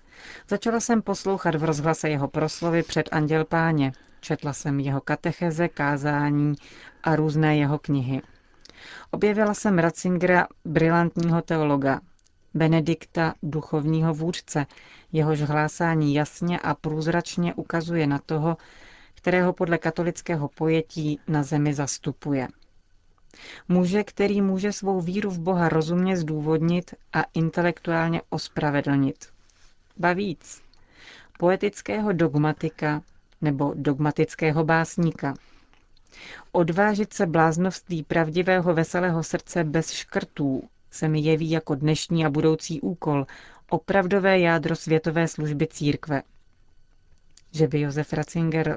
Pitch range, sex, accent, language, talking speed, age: 145-170 Hz, female, native, Czech, 105 wpm, 40-59